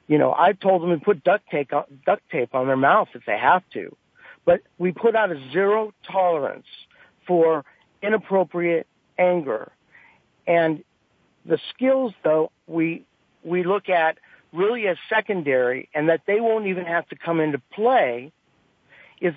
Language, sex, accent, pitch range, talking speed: English, male, American, 150-190 Hz, 155 wpm